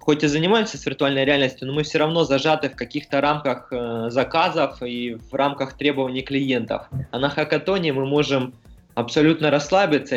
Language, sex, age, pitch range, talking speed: Russian, male, 20-39, 120-150 Hz, 165 wpm